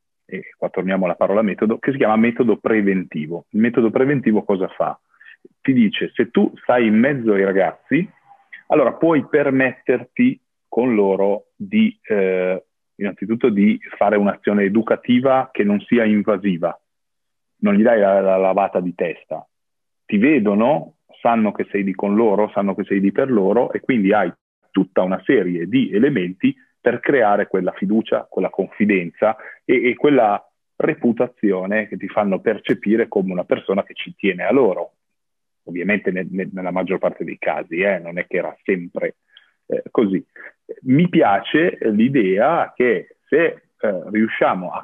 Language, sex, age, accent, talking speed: Italian, male, 40-59, native, 155 wpm